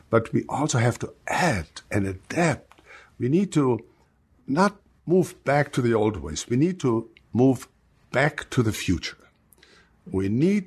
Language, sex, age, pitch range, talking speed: English, male, 60-79, 100-145 Hz, 155 wpm